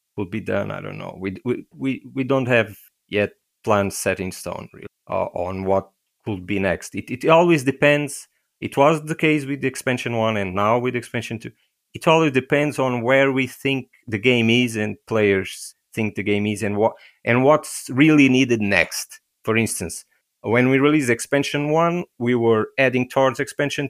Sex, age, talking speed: male, 30-49, 185 wpm